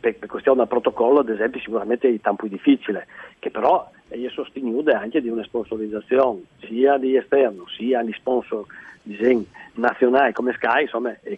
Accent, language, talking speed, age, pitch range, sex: native, Italian, 165 wpm, 50-69, 120-150 Hz, male